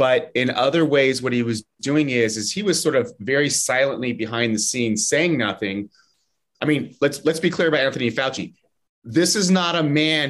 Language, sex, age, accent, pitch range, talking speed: English, male, 30-49, American, 115-150 Hz, 205 wpm